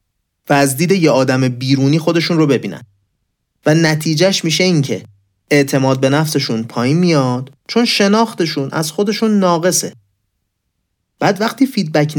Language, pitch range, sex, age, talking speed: Persian, 120-175 Hz, male, 30-49, 135 wpm